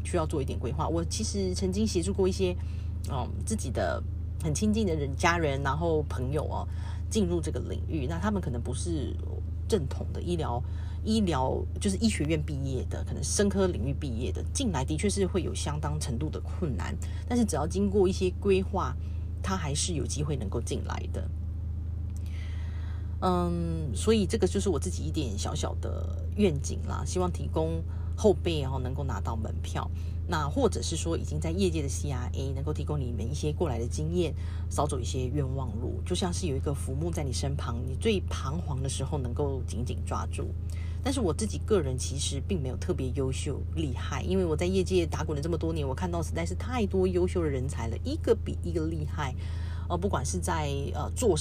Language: Chinese